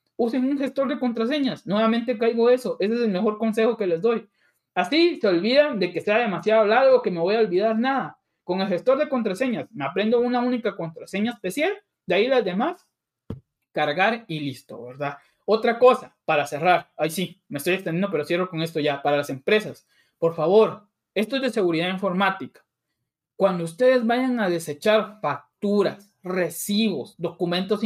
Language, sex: Spanish, male